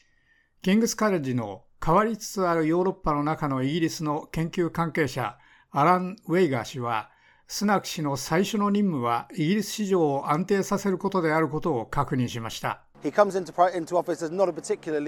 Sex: male